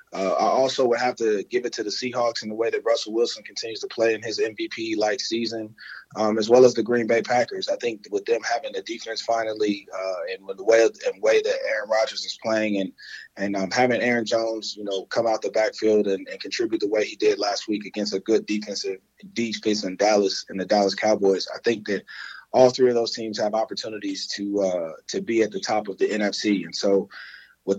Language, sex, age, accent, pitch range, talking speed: English, male, 20-39, American, 105-130 Hz, 230 wpm